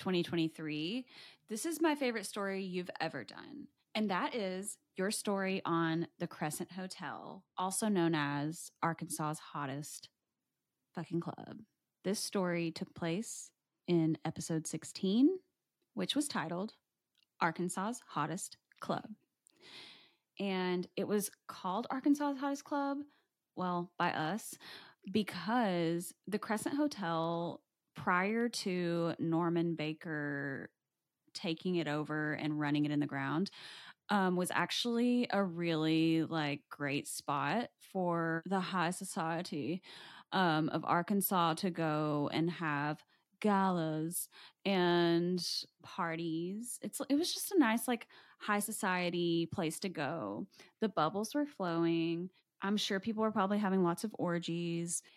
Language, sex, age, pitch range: English, female, 10-29, 165-210 Hz